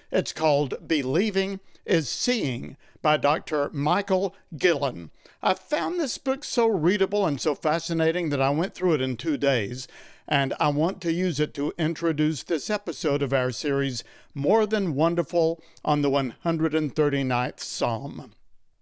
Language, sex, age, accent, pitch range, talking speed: English, male, 60-79, American, 140-180 Hz, 145 wpm